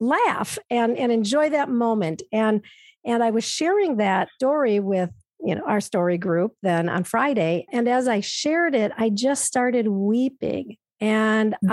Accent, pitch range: American, 175-215 Hz